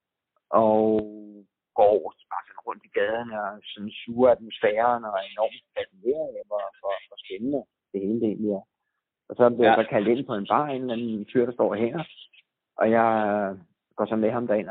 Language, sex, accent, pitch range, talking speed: Danish, male, native, 100-120 Hz, 190 wpm